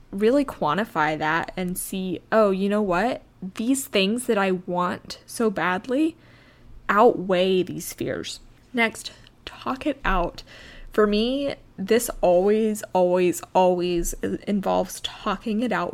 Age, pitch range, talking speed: 20-39, 180-220 Hz, 125 wpm